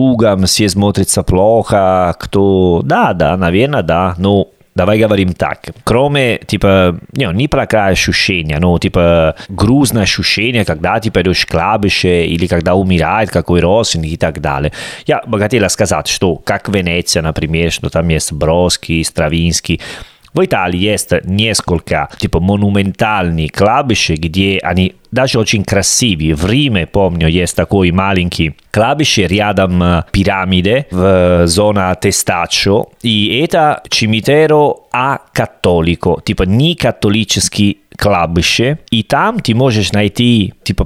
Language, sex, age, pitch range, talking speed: Russian, male, 30-49, 90-115 Hz, 125 wpm